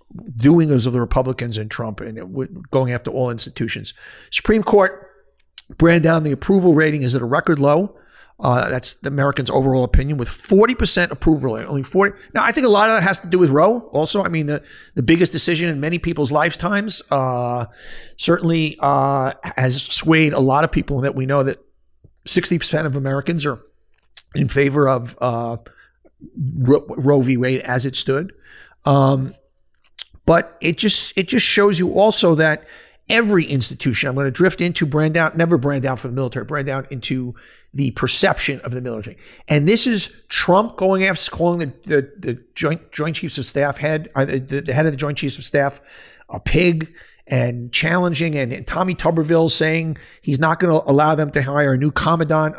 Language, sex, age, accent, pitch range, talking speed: English, male, 50-69, American, 135-170 Hz, 190 wpm